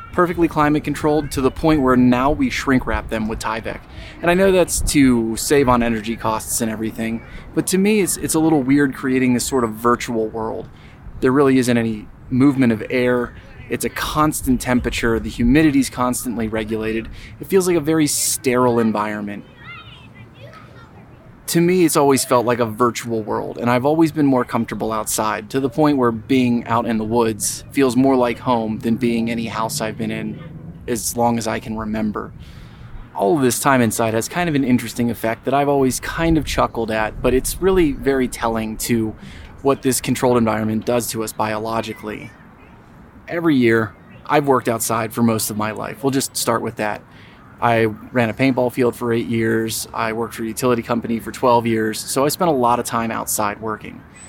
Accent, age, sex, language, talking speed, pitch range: American, 20-39, male, English, 195 wpm, 115-135 Hz